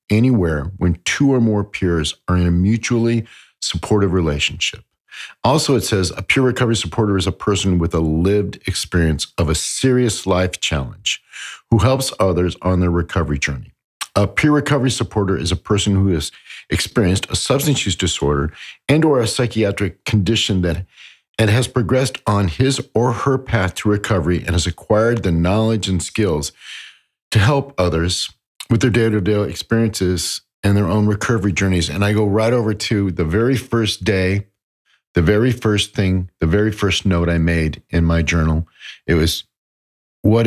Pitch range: 85-110 Hz